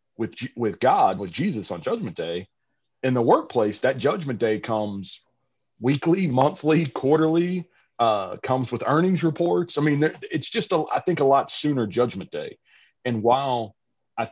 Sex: male